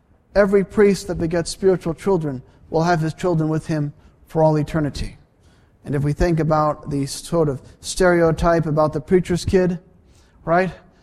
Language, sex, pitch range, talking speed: English, male, 115-180 Hz, 160 wpm